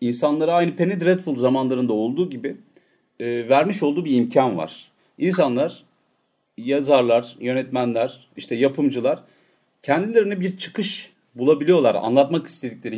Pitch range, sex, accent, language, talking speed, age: 130-195 Hz, male, native, Turkish, 110 wpm, 40-59